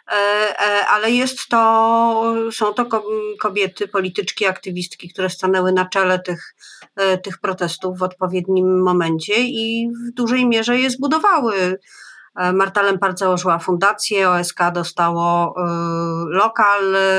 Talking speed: 110 wpm